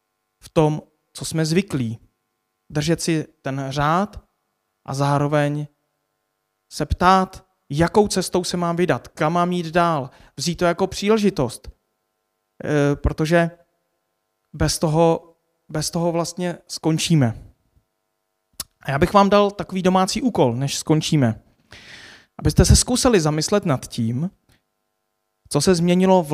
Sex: male